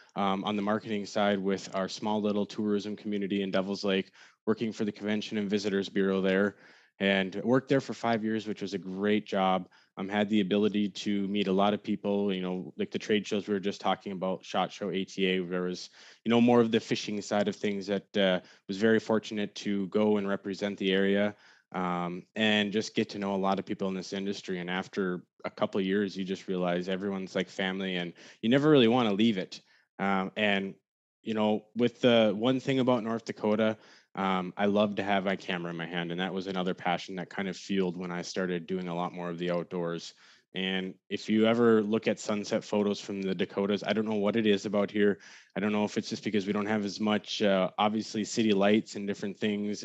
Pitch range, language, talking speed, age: 95-105 Hz, English, 230 wpm, 20-39